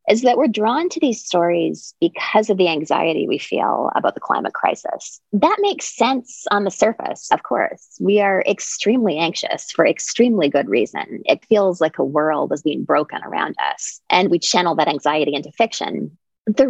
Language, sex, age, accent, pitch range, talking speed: English, female, 20-39, American, 170-230 Hz, 185 wpm